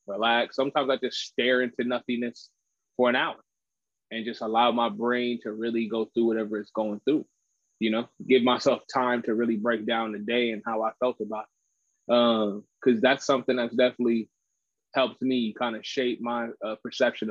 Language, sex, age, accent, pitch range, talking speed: English, male, 20-39, American, 120-140 Hz, 185 wpm